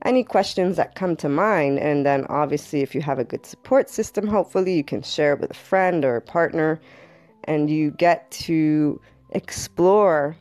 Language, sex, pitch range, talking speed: English, female, 160-195 Hz, 185 wpm